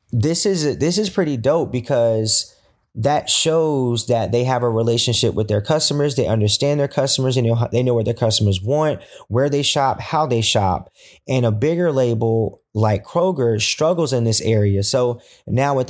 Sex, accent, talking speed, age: male, American, 175 wpm, 20-39